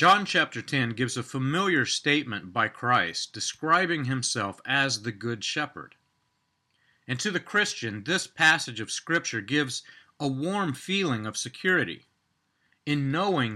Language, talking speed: English, 135 wpm